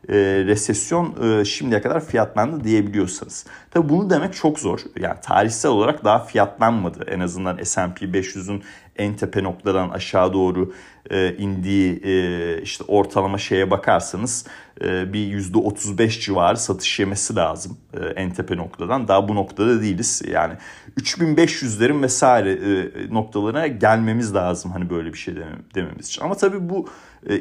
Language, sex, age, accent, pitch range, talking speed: Turkish, male, 40-59, native, 95-125 Hz, 140 wpm